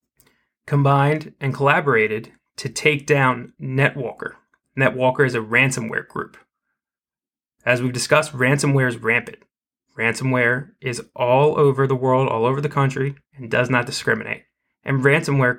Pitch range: 125-150 Hz